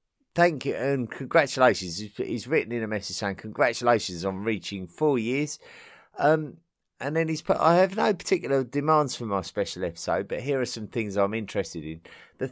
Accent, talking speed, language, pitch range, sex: British, 180 wpm, English, 95-135 Hz, male